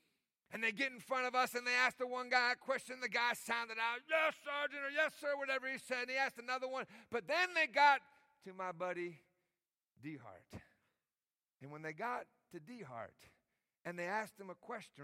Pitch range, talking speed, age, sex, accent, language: 220-295 Hz, 215 wpm, 50-69, male, American, English